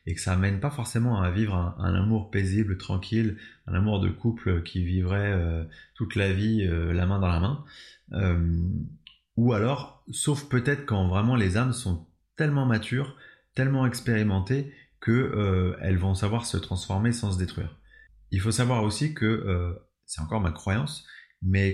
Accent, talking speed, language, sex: French, 175 wpm, French, male